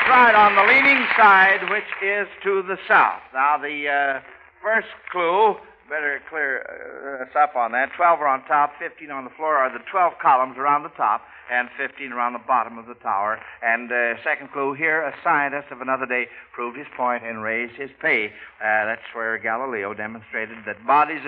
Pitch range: 125-195 Hz